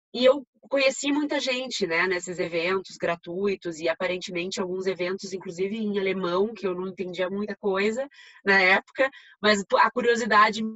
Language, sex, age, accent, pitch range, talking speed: Portuguese, female, 20-39, Brazilian, 170-215 Hz, 150 wpm